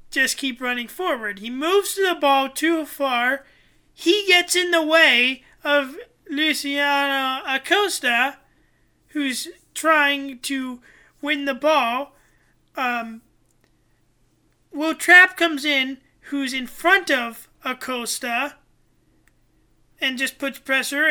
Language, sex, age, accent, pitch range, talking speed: English, male, 30-49, American, 260-310 Hz, 110 wpm